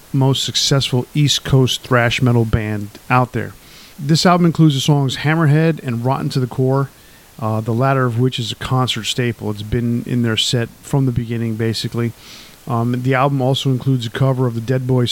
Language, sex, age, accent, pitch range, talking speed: English, male, 50-69, American, 115-135 Hz, 195 wpm